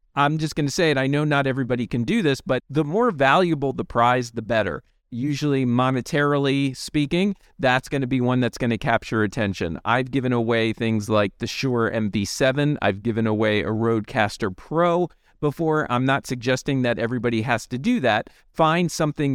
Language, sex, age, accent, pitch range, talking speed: English, male, 40-59, American, 115-140 Hz, 185 wpm